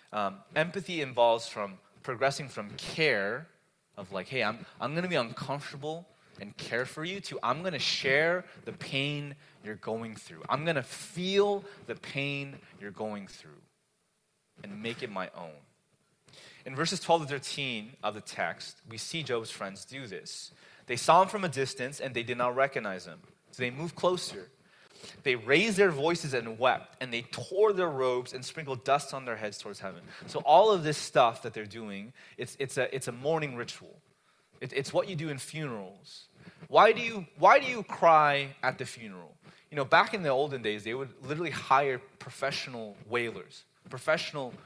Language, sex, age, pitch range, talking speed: English, male, 30-49, 120-165 Hz, 185 wpm